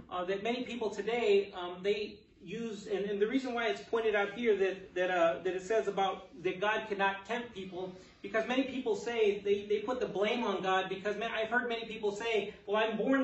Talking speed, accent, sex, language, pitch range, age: 225 wpm, American, male, English, 195-230 Hz, 30-49